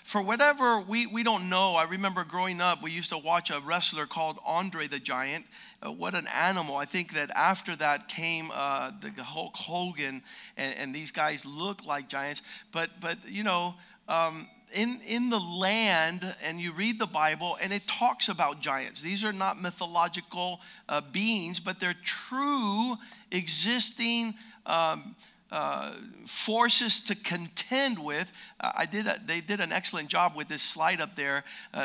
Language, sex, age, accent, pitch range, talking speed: English, male, 50-69, American, 160-215 Hz, 170 wpm